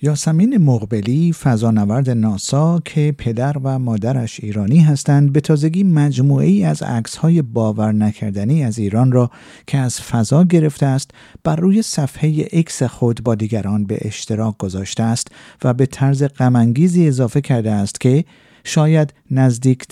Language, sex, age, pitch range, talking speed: Persian, male, 50-69, 115-150 Hz, 140 wpm